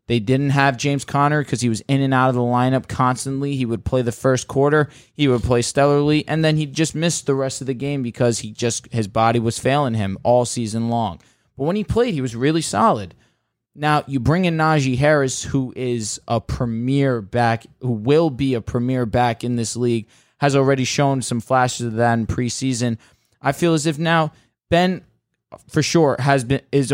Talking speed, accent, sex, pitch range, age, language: 210 wpm, American, male, 120-140 Hz, 20-39, English